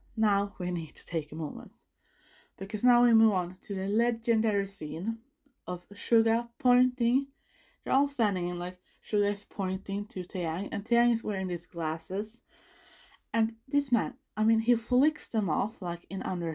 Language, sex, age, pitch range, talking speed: English, female, 20-39, 175-245 Hz, 165 wpm